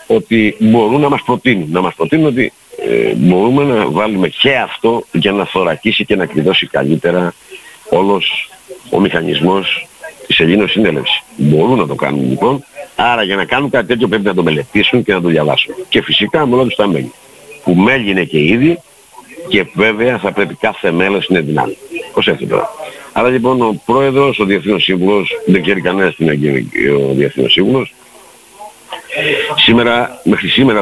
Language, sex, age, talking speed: Greek, male, 60-79, 175 wpm